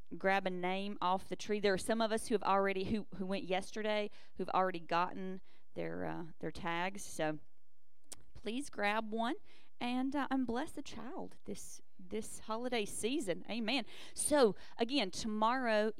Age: 30-49